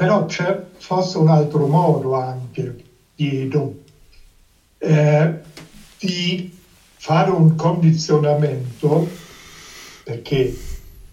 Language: Italian